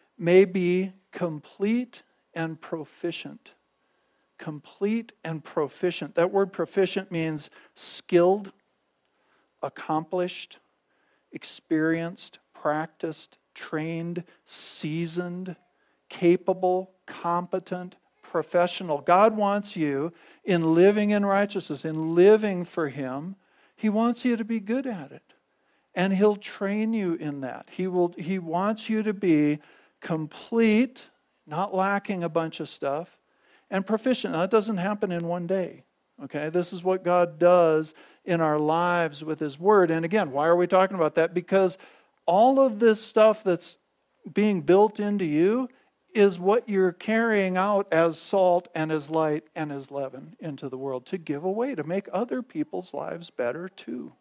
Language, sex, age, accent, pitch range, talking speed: English, male, 50-69, American, 160-200 Hz, 140 wpm